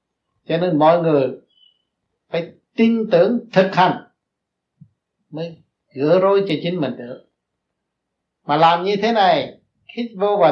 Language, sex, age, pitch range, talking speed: Vietnamese, male, 60-79, 145-195 Hz, 135 wpm